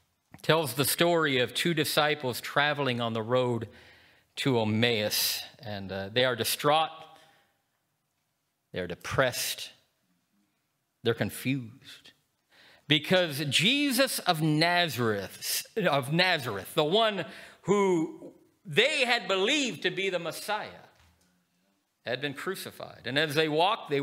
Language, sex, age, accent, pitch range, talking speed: English, male, 50-69, American, 125-200 Hz, 110 wpm